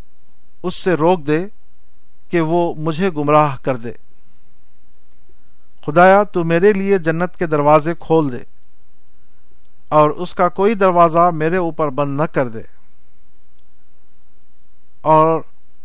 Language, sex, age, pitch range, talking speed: Urdu, male, 50-69, 130-175 Hz, 115 wpm